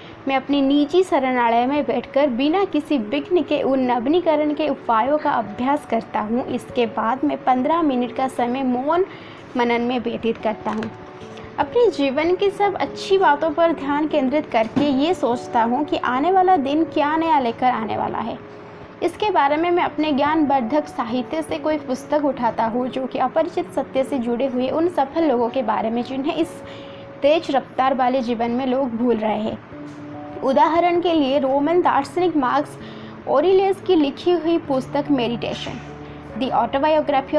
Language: Hindi